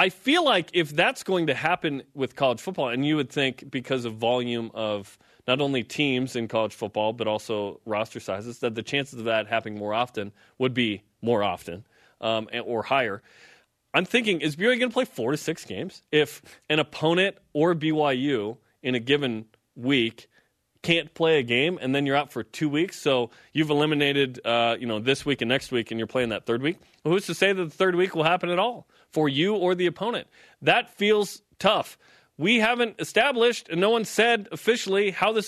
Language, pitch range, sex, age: English, 125-185 Hz, male, 30-49